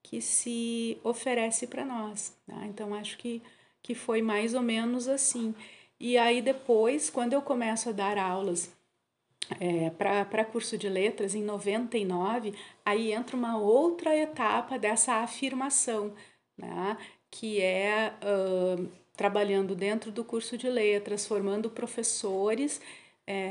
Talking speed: 125 wpm